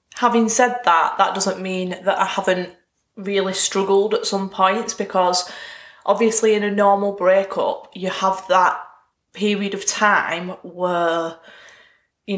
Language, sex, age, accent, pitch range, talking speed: English, female, 20-39, British, 170-205 Hz, 135 wpm